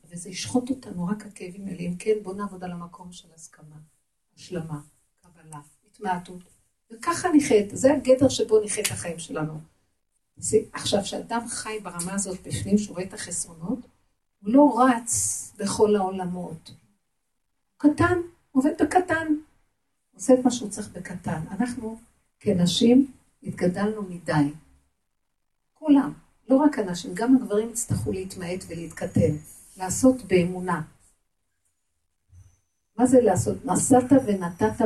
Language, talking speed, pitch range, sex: Hebrew, 120 wpm, 175-240 Hz, female